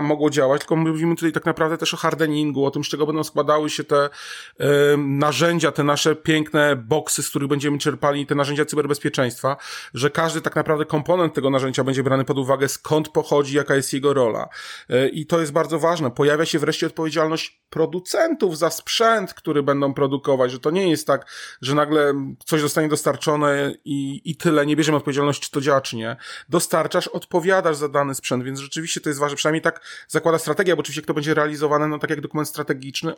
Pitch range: 140-155 Hz